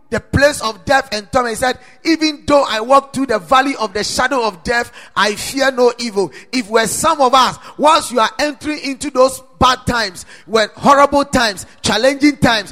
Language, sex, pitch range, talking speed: English, male, 210-275 Hz, 200 wpm